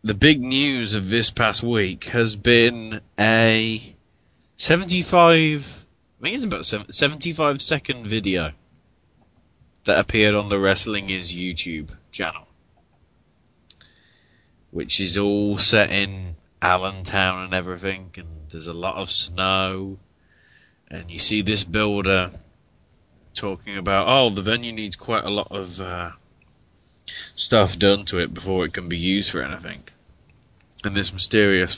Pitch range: 90-105 Hz